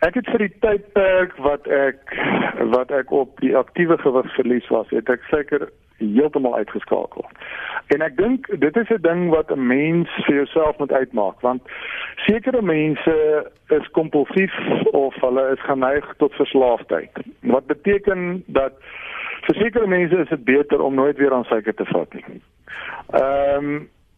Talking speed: 150 wpm